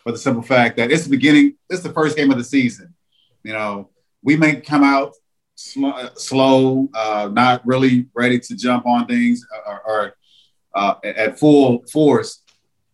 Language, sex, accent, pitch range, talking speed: English, male, American, 115-145 Hz, 175 wpm